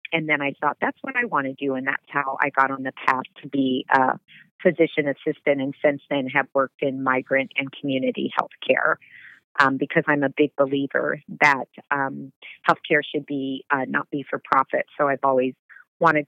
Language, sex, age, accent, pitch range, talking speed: English, female, 40-59, American, 135-150 Hz, 195 wpm